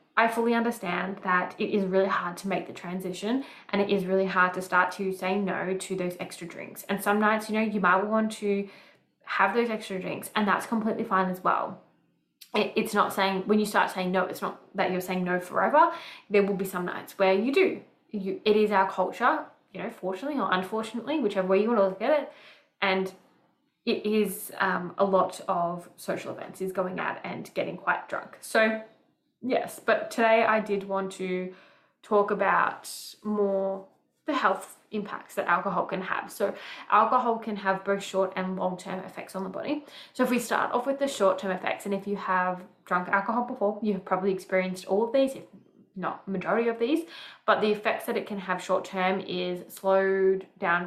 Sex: female